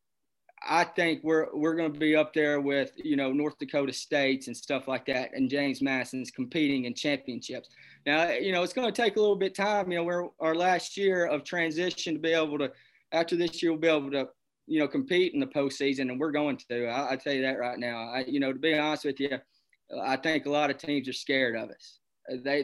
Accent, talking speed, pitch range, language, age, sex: American, 245 wpm, 135-155 Hz, English, 20-39, male